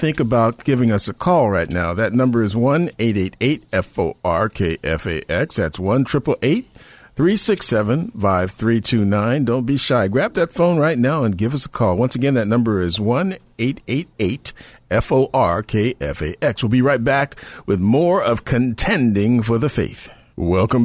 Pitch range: 95-130 Hz